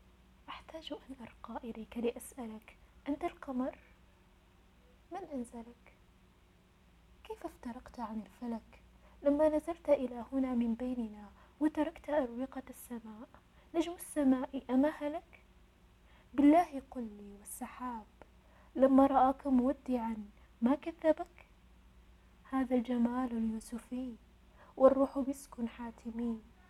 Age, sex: 20-39, female